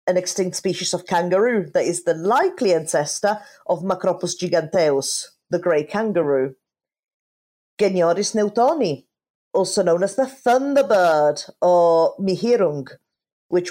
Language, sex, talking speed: English, female, 115 wpm